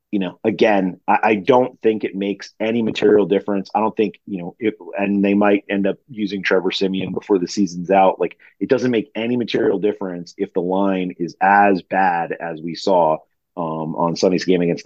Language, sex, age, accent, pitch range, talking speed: English, male, 30-49, American, 90-115 Hz, 205 wpm